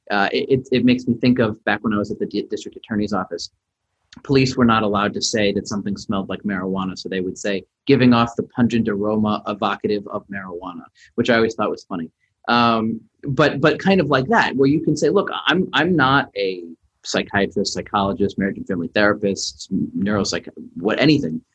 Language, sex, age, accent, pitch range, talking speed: English, male, 30-49, American, 100-125 Hz, 195 wpm